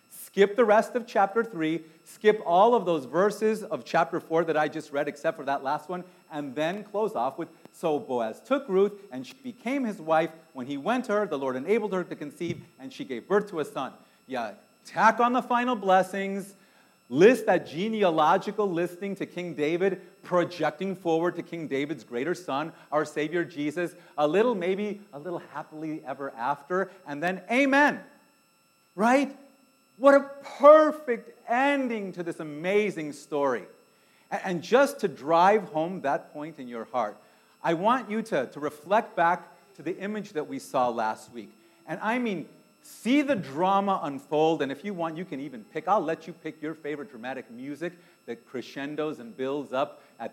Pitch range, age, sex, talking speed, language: 145-210 Hz, 40-59, male, 180 wpm, English